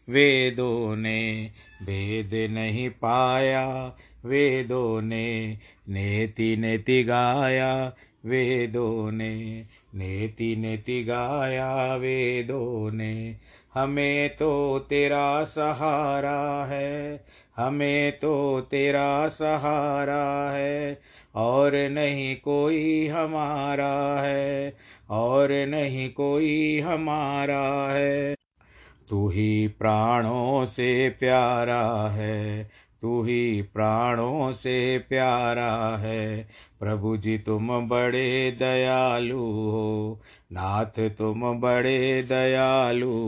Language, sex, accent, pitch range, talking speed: Hindi, male, native, 110-135 Hz, 80 wpm